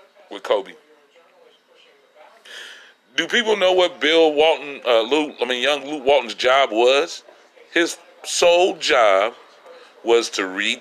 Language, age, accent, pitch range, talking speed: English, 40-59, American, 115-175 Hz, 130 wpm